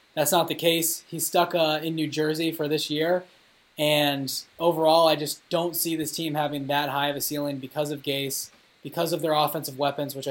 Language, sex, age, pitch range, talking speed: English, male, 20-39, 140-160 Hz, 210 wpm